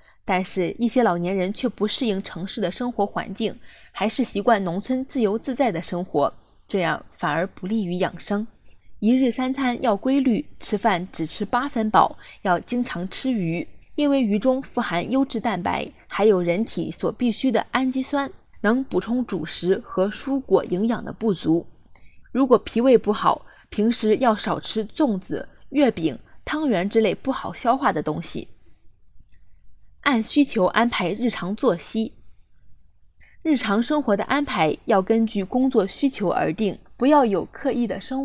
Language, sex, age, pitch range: Chinese, female, 20-39, 190-255 Hz